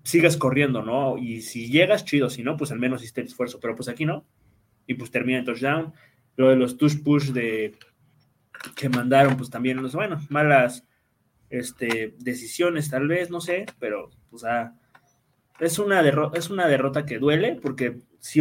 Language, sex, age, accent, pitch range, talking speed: Spanish, male, 20-39, Mexican, 120-150 Hz, 165 wpm